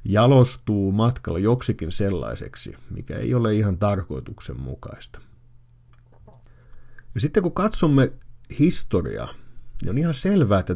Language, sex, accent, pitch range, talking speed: Finnish, male, native, 95-125 Hz, 105 wpm